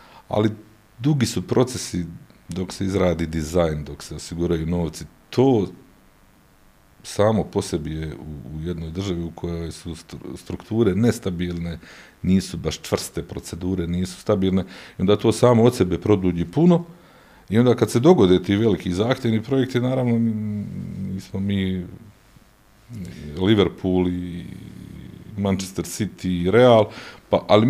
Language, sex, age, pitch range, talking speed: Croatian, male, 50-69, 85-110 Hz, 125 wpm